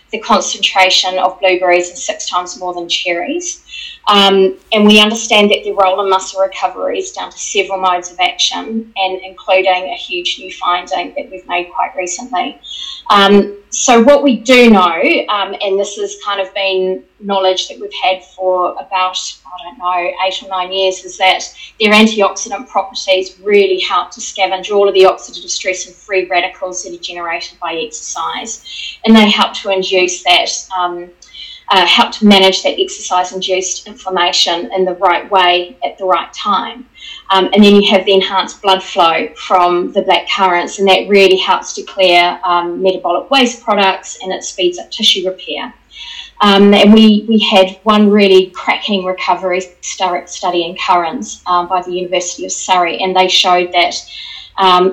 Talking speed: 170 wpm